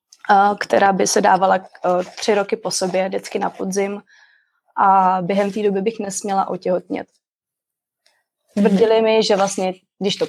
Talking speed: 140 wpm